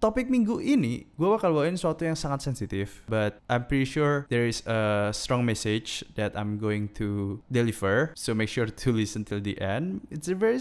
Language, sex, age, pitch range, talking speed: Indonesian, male, 20-39, 115-155 Hz, 200 wpm